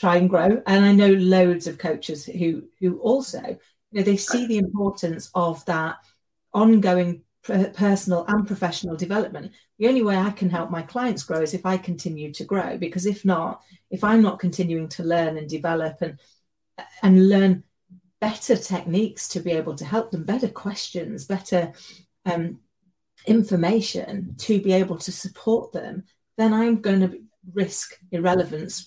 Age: 40-59